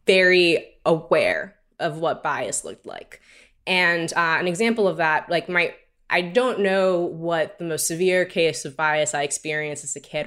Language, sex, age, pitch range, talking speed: English, female, 20-39, 155-185 Hz, 175 wpm